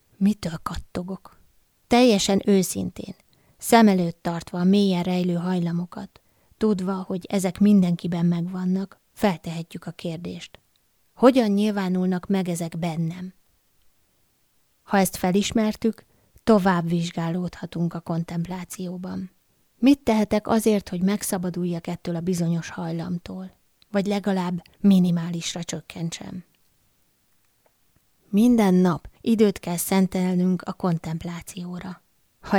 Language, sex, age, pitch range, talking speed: Hungarian, female, 20-39, 170-195 Hz, 95 wpm